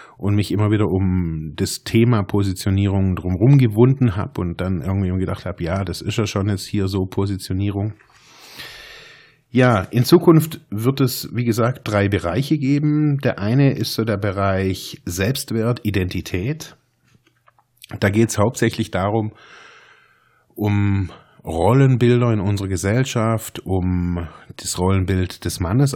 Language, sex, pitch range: German, male, 95-120 Hz